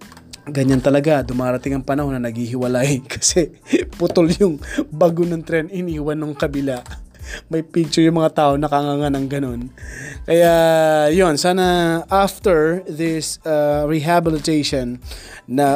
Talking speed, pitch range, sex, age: 120 wpm, 140-170 Hz, male, 20-39